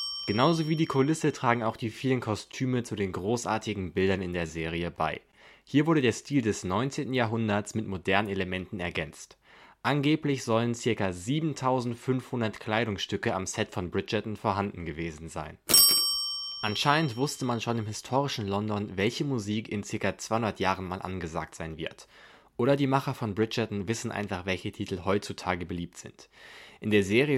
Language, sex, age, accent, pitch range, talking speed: German, male, 20-39, German, 95-125 Hz, 160 wpm